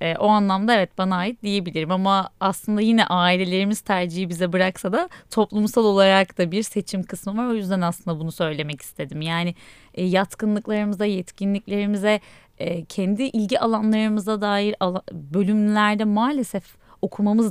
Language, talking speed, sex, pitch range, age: Turkish, 125 wpm, female, 175-215 Hz, 30-49